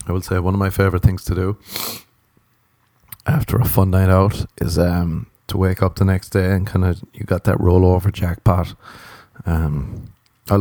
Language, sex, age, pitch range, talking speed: English, male, 30-49, 90-115 Hz, 185 wpm